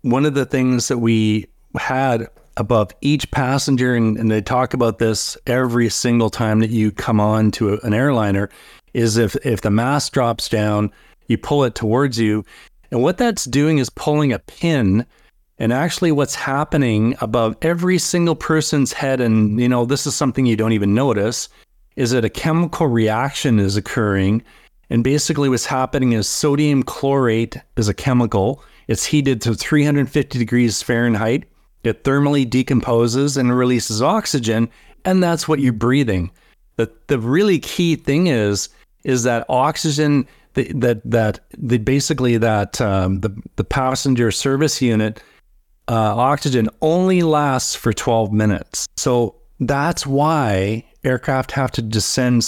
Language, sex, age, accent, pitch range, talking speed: English, male, 40-59, American, 110-140 Hz, 155 wpm